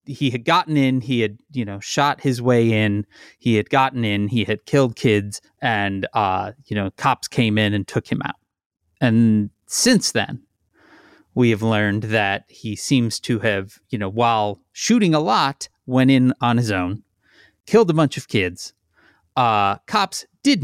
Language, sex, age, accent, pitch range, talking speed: English, male, 30-49, American, 110-145 Hz, 175 wpm